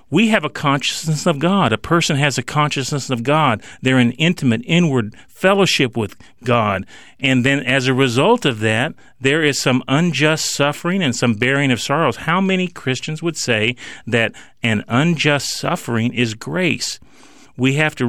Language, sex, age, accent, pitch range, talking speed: English, male, 40-59, American, 115-155 Hz, 170 wpm